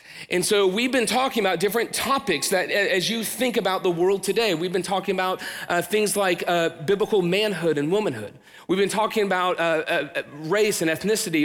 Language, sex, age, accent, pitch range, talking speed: English, male, 40-59, American, 170-215 Hz, 195 wpm